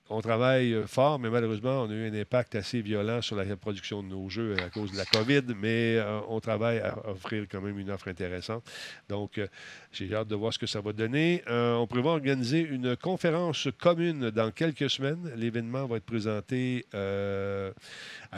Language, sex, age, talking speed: French, male, 40-59, 195 wpm